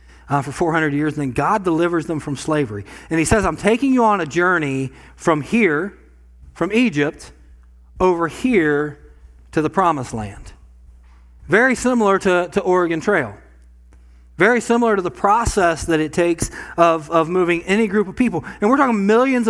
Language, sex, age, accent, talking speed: English, male, 40-59, American, 170 wpm